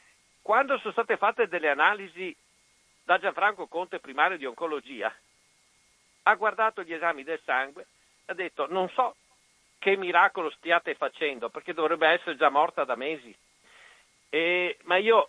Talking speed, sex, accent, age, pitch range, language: 145 wpm, male, native, 50-69, 145-205 Hz, Italian